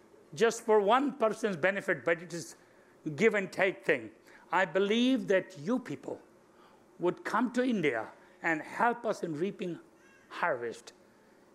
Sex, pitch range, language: male, 185-230 Hz, English